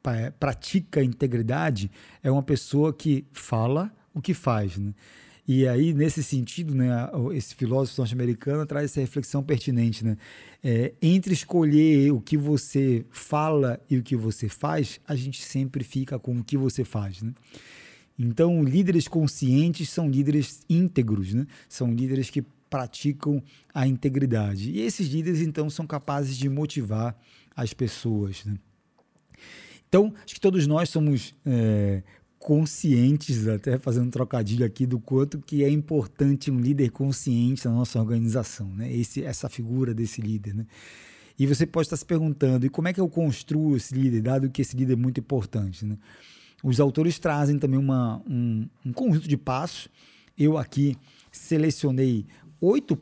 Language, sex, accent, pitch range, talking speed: Portuguese, male, Brazilian, 120-150 Hz, 155 wpm